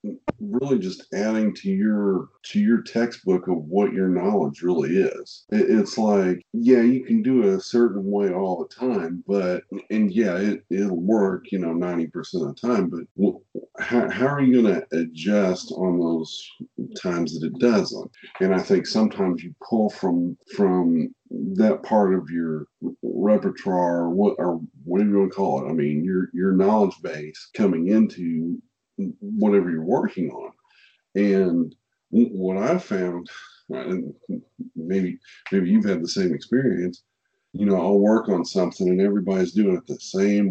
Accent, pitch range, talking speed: American, 90-120 Hz, 170 wpm